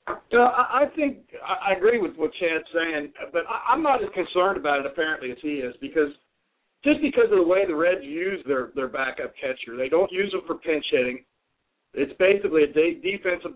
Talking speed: 195 wpm